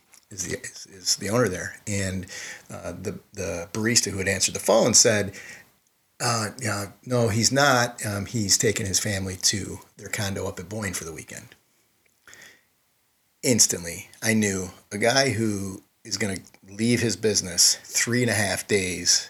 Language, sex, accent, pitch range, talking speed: English, male, American, 95-115 Hz, 165 wpm